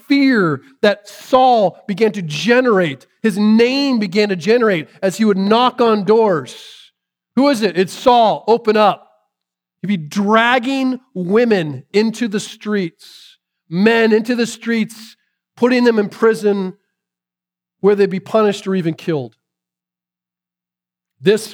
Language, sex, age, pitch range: English, male, 40-59, 155-225 Hz